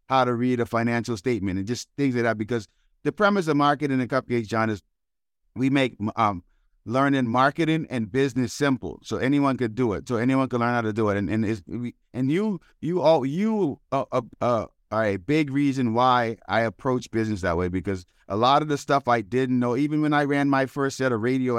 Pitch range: 115-140 Hz